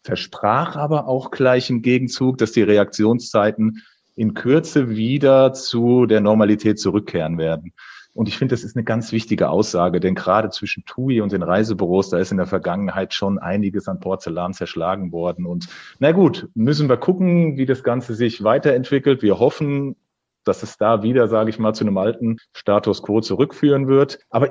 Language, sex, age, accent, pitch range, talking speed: German, male, 40-59, German, 110-130 Hz, 175 wpm